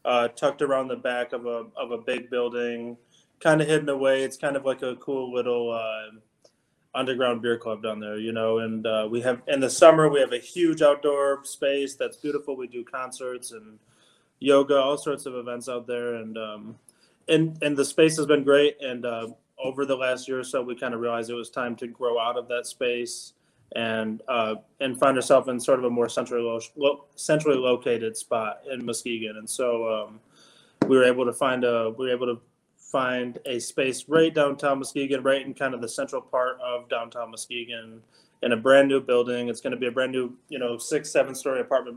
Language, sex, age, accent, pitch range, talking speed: English, male, 20-39, American, 120-135 Hz, 215 wpm